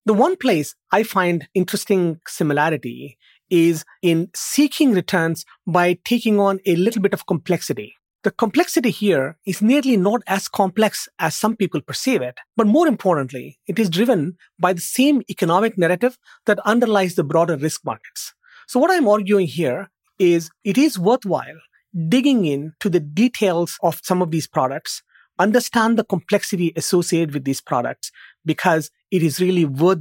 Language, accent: English, Indian